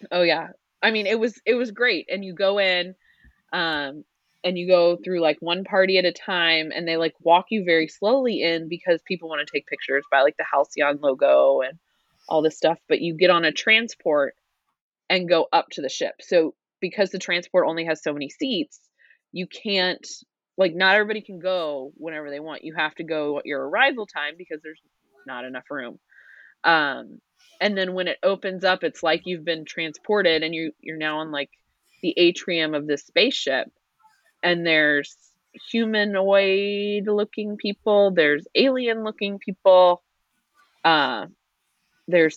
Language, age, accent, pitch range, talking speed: English, 20-39, American, 165-215 Hz, 175 wpm